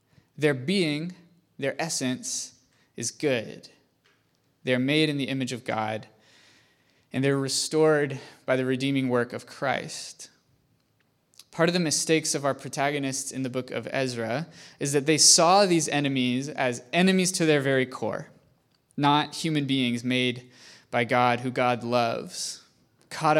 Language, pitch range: English, 125-150 Hz